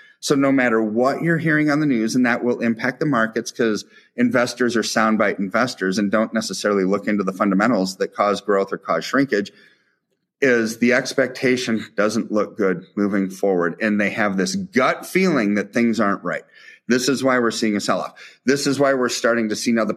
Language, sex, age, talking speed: English, male, 30-49, 200 wpm